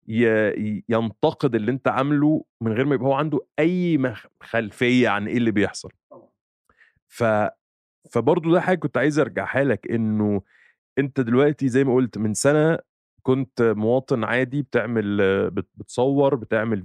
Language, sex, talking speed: Arabic, male, 130 wpm